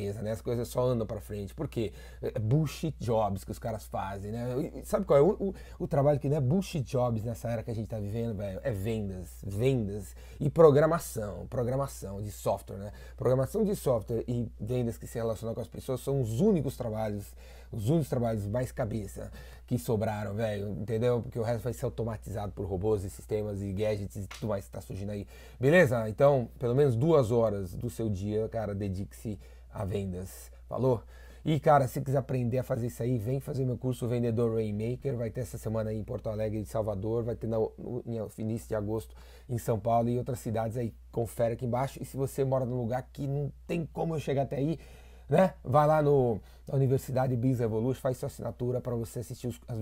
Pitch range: 105-130 Hz